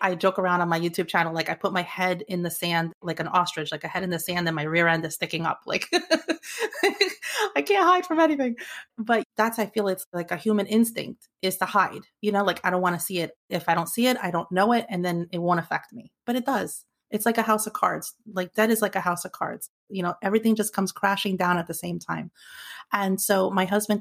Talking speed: 260 wpm